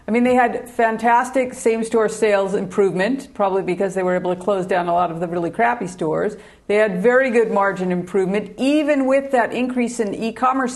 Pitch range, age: 195-240 Hz, 50-69